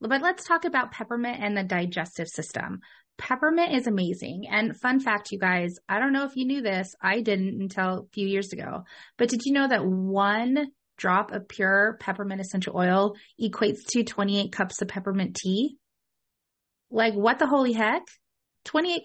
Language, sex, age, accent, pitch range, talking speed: English, female, 30-49, American, 195-250 Hz, 175 wpm